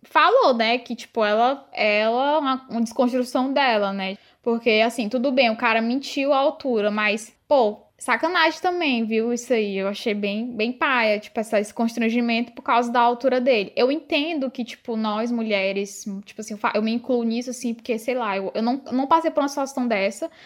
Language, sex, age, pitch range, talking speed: Portuguese, female, 10-29, 210-260 Hz, 200 wpm